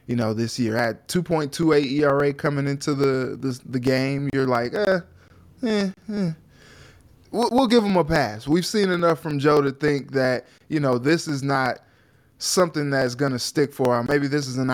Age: 20-39